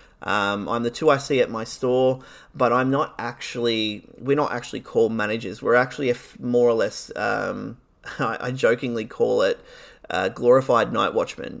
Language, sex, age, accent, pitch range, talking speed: English, male, 30-49, Australian, 115-150 Hz, 185 wpm